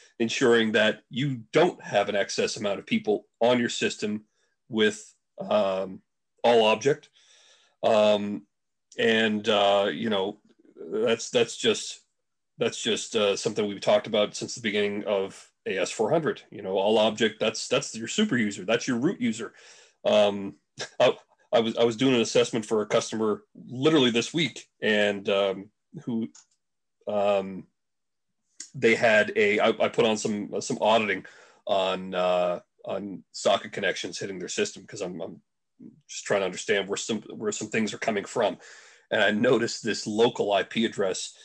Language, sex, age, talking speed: English, male, 40-59, 160 wpm